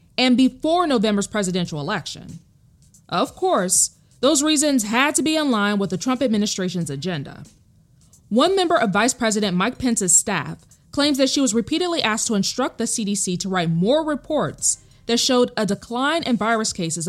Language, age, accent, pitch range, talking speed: English, 20-39, American, 180-260 Hz, 170 wpm